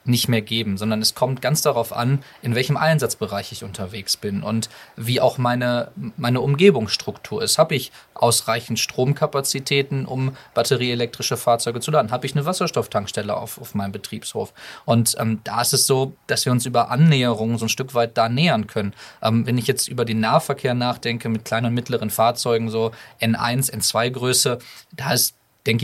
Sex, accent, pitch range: male, German, 115-130 Hz